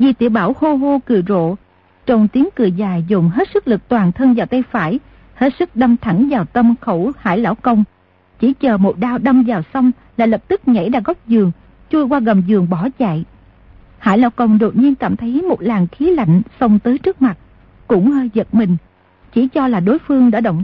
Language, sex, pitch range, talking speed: Vietnamese, female, 220-270 Hz, 220 wpm